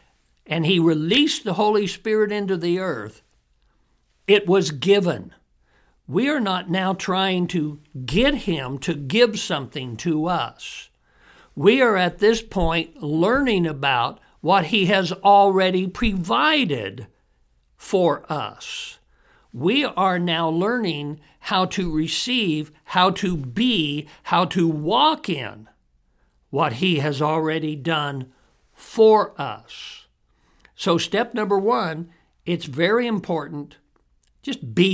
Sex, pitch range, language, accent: male, 150-195 Hz, English, American